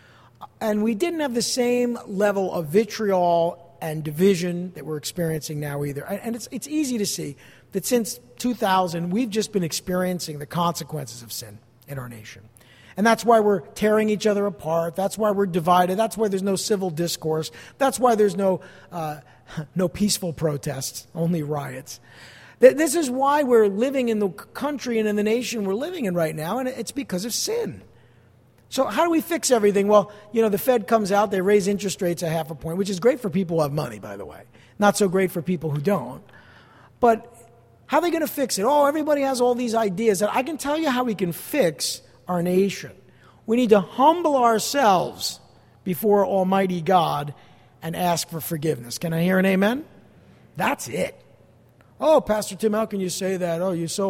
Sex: male